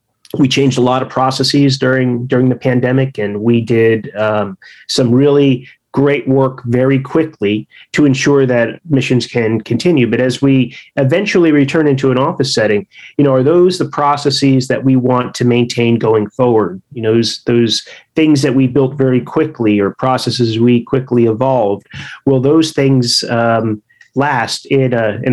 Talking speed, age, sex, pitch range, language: 165 wpm, 30-49, male, 120-140 Hz, English